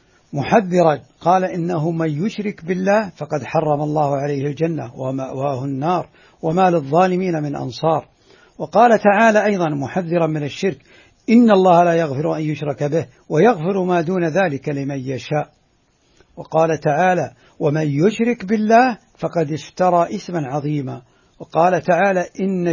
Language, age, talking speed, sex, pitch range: Arabic, 60-79, 125 wpm, male, 155-210 Hz